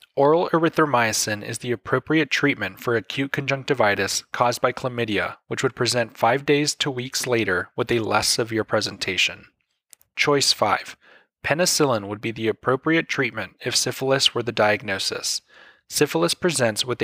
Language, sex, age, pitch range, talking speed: English, male, 20-39, 115-145 Hz, 145 wpm